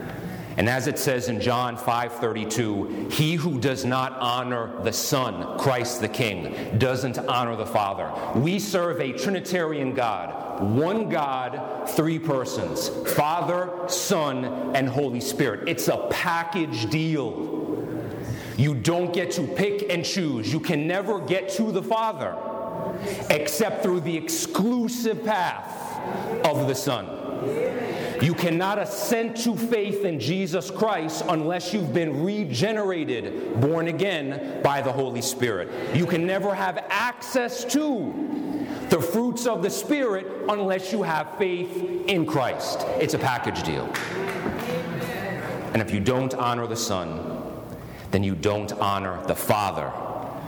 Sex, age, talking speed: male, 40-59, 135 wpm